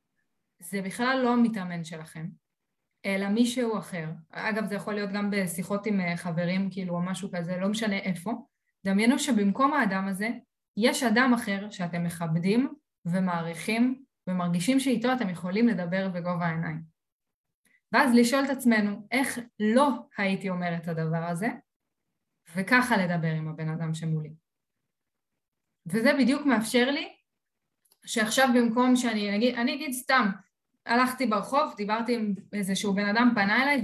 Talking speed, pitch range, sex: 135 wpm, 185-245 Hz, female